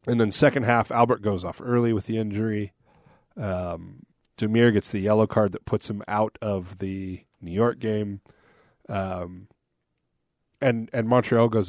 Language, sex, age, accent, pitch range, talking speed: English, male, 30-49, American, 100-115 Hz, 160 wpm